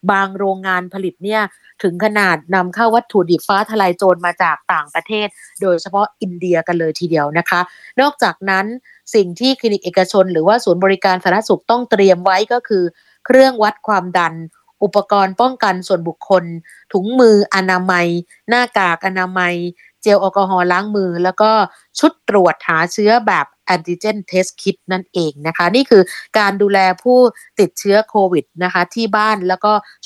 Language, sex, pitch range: Thai, female, 180-215 Hz